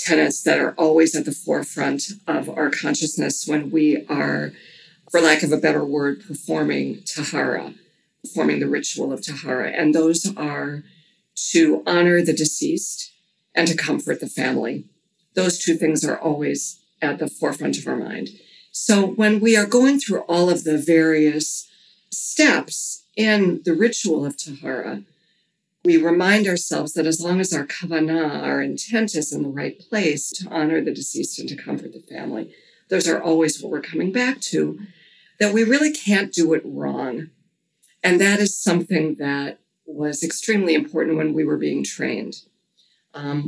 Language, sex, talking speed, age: English, female, 165 wpm, 50-69